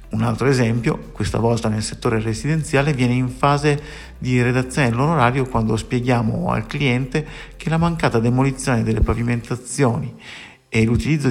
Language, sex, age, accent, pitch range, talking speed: Italian, male, 50-69, native, 110-145 Hz, 140 wpm